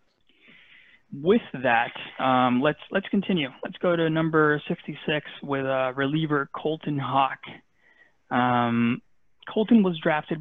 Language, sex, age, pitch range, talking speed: English, male, 20-39, 135-160 Hz, 120 wpm